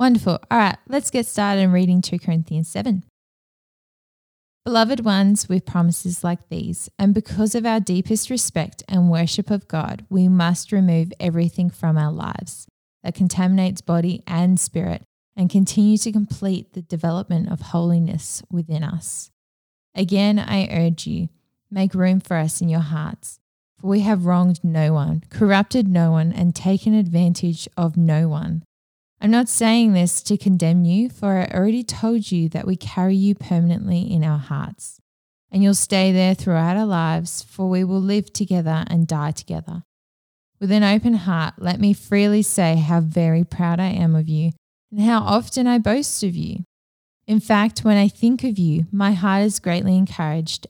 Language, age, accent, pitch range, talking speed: English, 10-29, Australian, 170-205 Hz, 170 wpm